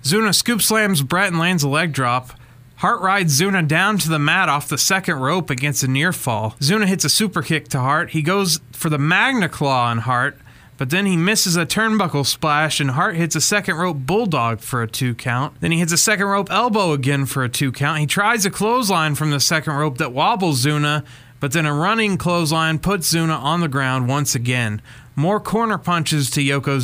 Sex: male